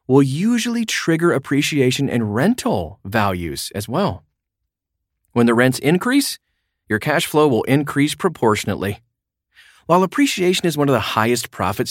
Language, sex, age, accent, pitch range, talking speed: English, male, 30-49, American, 105-145 Hz, 135 wpm